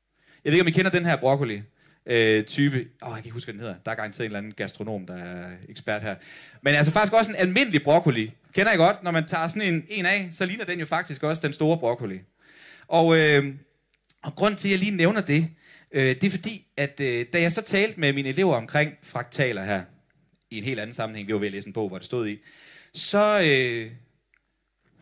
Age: 30-49